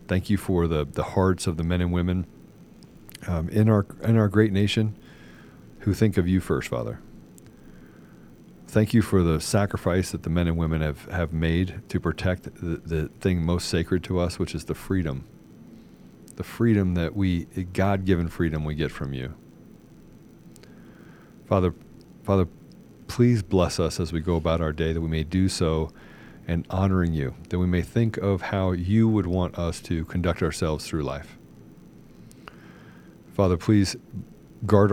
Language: English